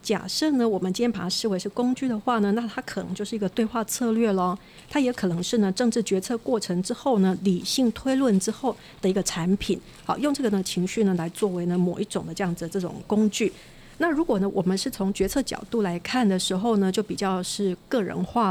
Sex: female